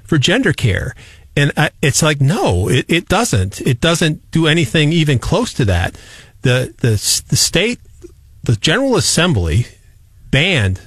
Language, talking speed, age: English, 150 wpm, 40-59